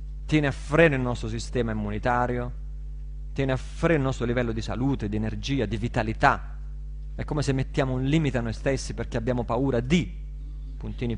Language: Italian